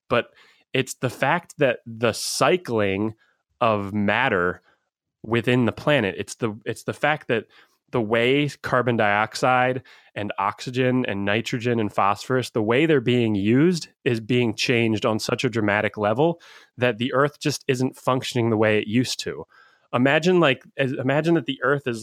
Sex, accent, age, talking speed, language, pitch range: male, American, 20-39, 160 wpm, English, 115-135 Hz